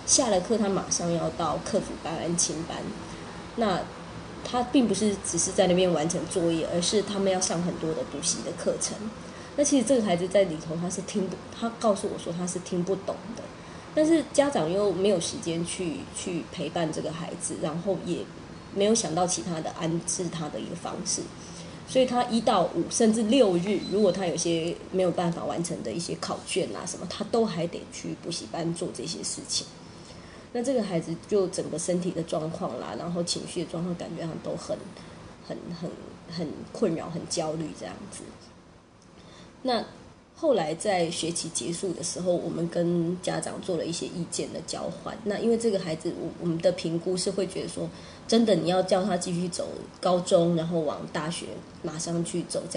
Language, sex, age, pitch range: Chinese, female, 20-39, 170-200 Hz